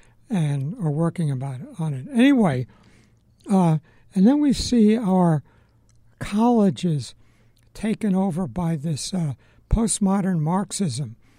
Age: 60-79